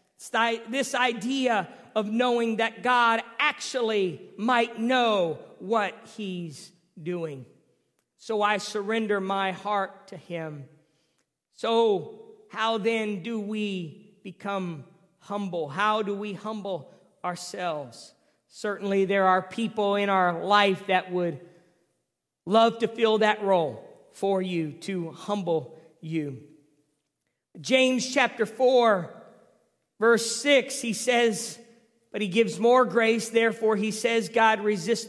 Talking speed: 115 wpm